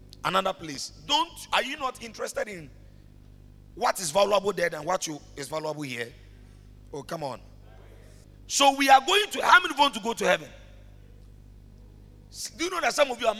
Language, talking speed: English, 185 wpm